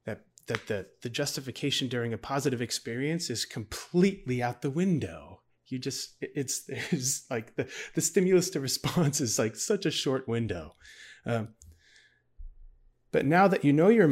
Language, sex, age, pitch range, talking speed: English, male, 30-49, 115-160 Hz, 155 wpm